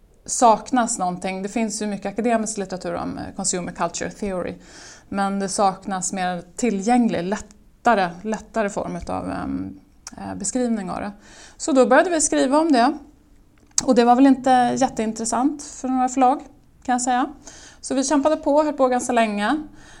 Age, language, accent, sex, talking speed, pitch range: 20-39, Swedish, native, female, 155 wpm, 185-245 Hz